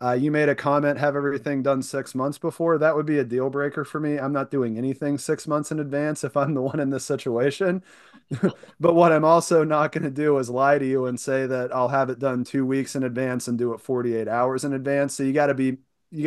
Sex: male